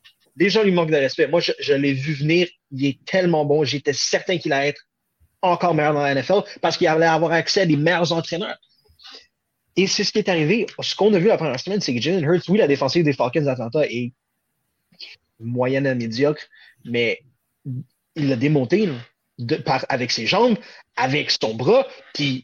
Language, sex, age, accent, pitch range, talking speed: French, male, 30-49, Canadian, 130-170 Hz, 200 wpm